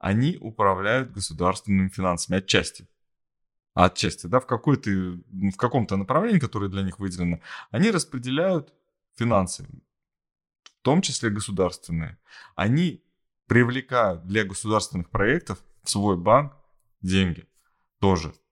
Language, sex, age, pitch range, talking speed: Russian, male, 20-39, 90-120 Hz, 105 wpm